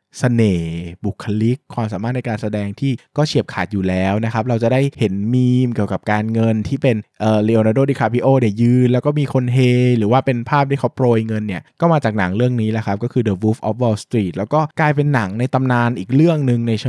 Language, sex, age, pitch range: Thai, male, 20-39, 110-135 Hz